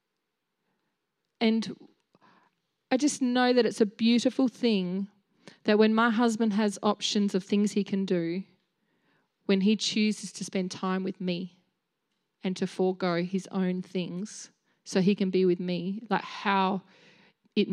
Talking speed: 145 wpm